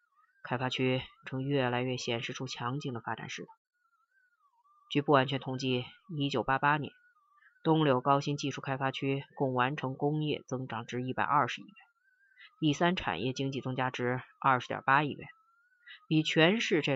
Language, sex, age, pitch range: Chinese, female, 20-39, 130-210 Hz